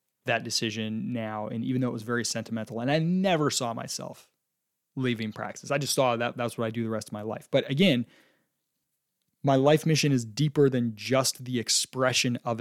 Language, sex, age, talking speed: English, male, 20-39, 205 wpm